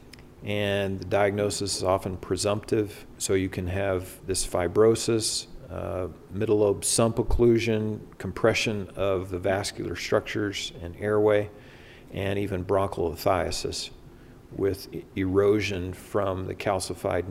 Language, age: English, 50-69